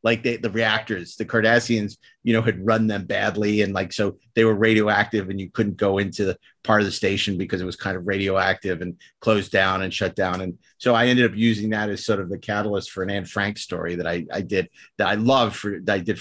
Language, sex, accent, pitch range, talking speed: English, male, American, 100-120 Hz, 250 wpm